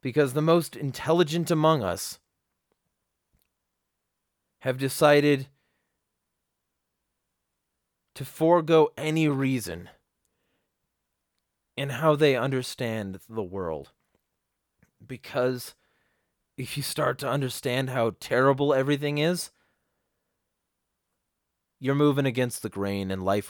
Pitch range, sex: 100-145 Hz, male